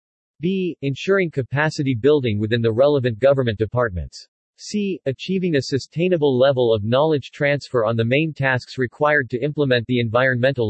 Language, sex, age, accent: English, male, 40-59, American